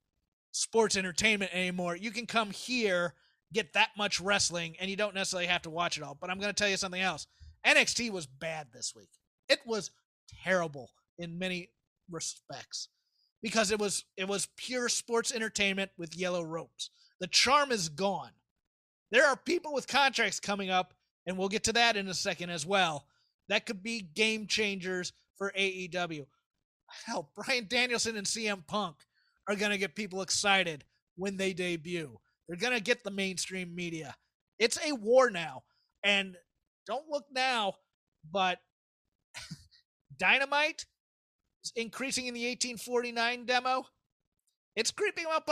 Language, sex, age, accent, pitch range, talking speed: English, male, 30-49, American, 180-235 Hz, 155 wpm